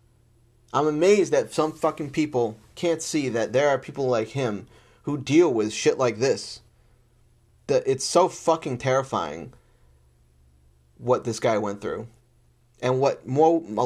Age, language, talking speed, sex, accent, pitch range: 30-49, English, 145 wpm, male, American, 110-135 Hz